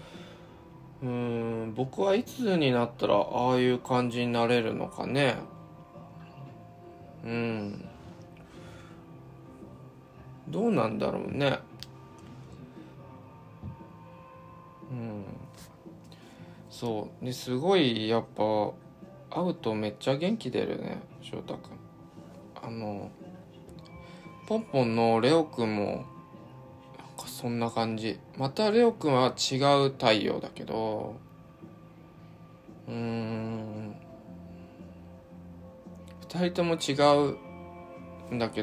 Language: Japanese